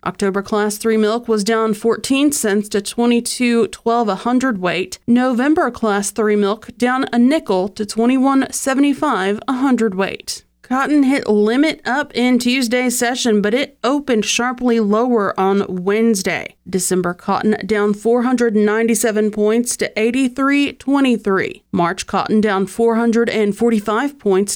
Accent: American